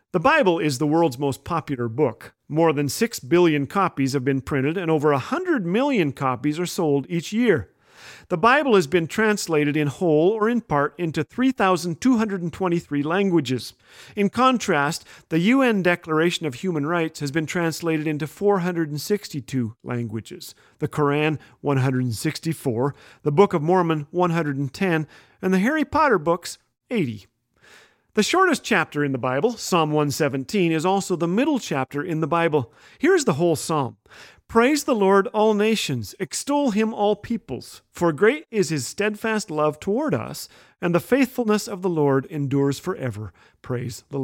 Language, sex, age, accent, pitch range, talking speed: English, male, 40-59, American, 145-195 Hz, 155 wpm